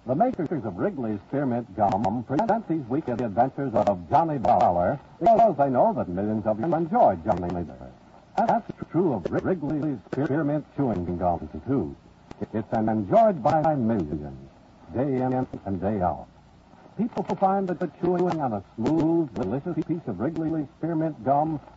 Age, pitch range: 70-89, 105-175 Hz